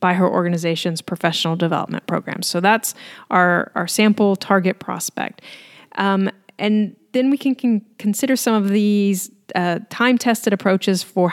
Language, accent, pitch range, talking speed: English, American, 180-220 Hz, 140 wpm